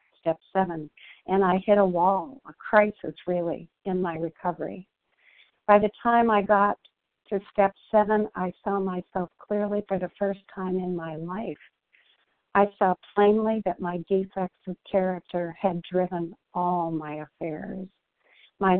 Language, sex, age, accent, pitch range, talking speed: English, female, 60-79, American, 170-200 Hz, 145 wpm